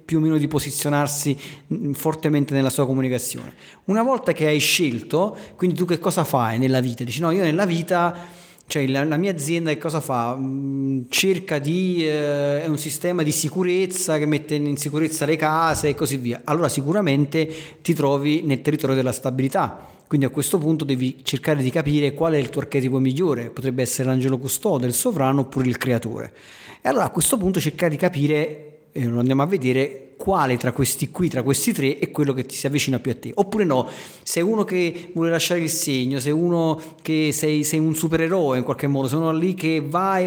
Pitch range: 135-165 Hz